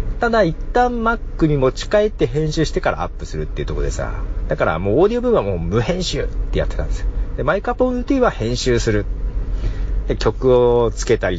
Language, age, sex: Japanese, 40-59, male